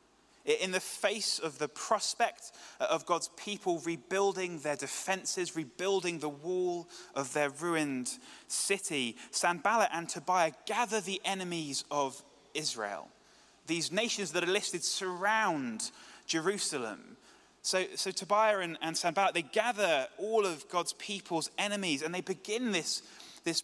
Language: English